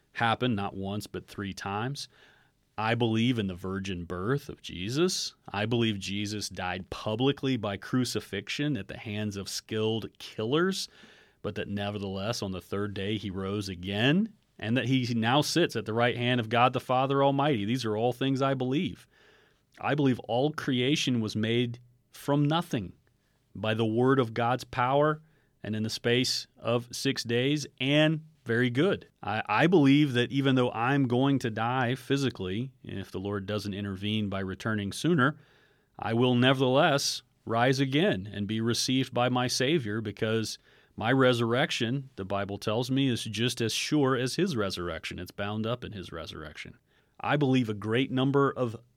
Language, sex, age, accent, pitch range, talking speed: English, male, 30-49, American, 105-135 Hz, 170 wpm